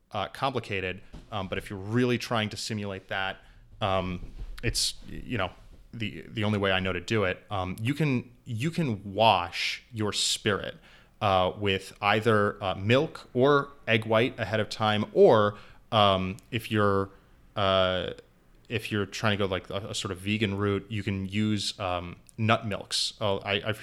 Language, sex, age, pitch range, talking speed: English, male, 20-39, 95-115 Hz, 175 wpm